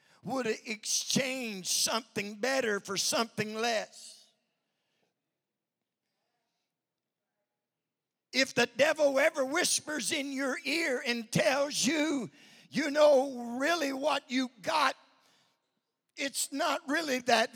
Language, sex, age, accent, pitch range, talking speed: English, male, 50-69, American, 215-265 Hz, 100 wpm